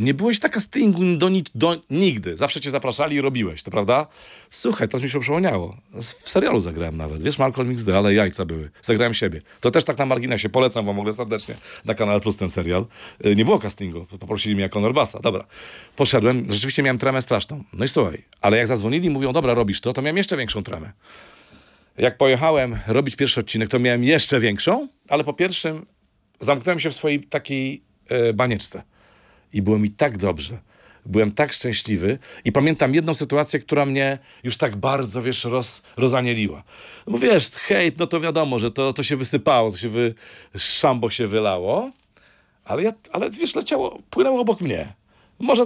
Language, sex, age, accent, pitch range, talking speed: Polish, male, 40-59, native, 110-150 Hz, 185 wpm